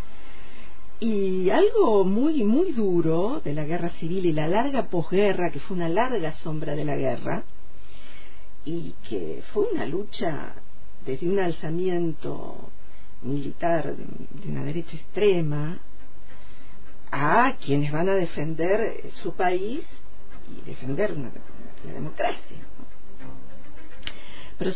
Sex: female